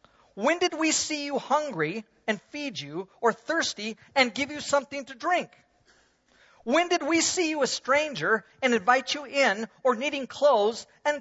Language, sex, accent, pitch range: English, male, American, 195-300 Hz